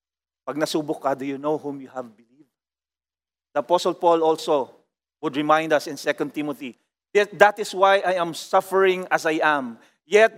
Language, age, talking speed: English, 40-59, 160 wpm